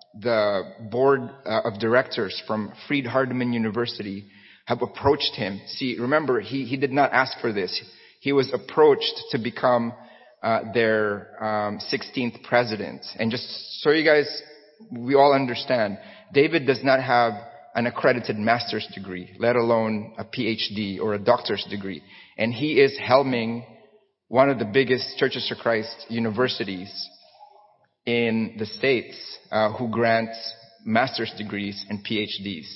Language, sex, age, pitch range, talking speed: English, male, 30-49, 110-135 Hz, 140 wpm